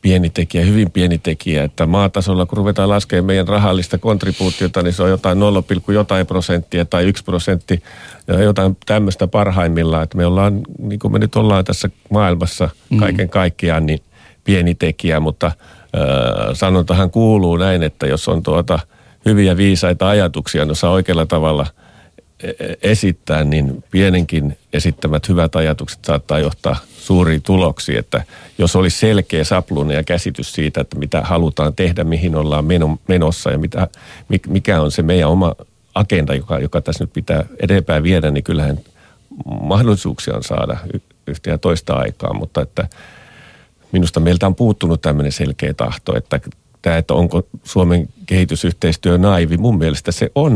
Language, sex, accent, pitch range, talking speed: Finnish, male, native, 80-95 Hz, 150 wpm